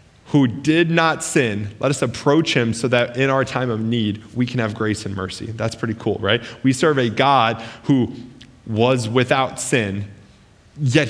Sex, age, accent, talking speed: male, 20-39, American, 185 wpm